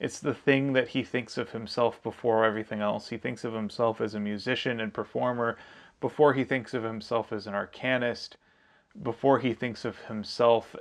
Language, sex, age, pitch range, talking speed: English, male, 30-49, 115-140 Hz, 185 wpm